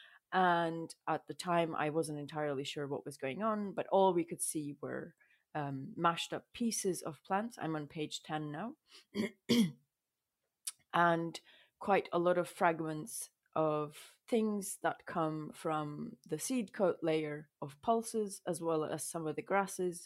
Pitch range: 155-190 Hz